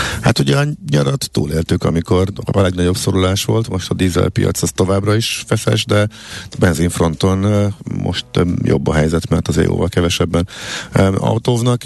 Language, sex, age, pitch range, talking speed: Hungarian, male, 50-69, 85-105 Hz, 145 wpm